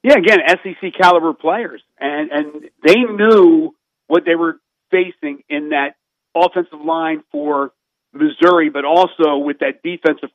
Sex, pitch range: male, 150-200 Hz